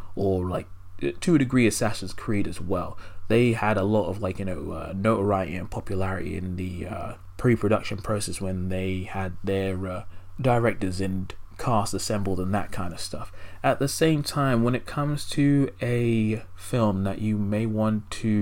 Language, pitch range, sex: English, 95-115 Hz, male